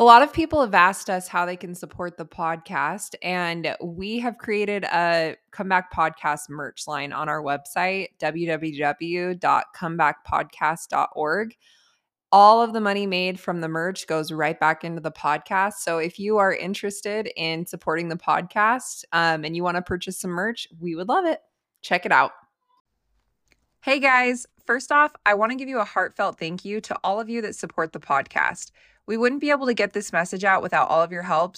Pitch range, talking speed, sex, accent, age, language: 165-215 Hz, 190 wpm, female, American, 20-39, English